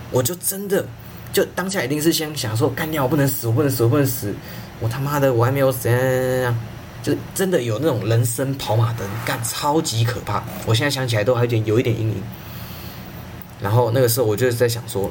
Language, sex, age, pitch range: Chinese, male, 20-39, 105-125 Hz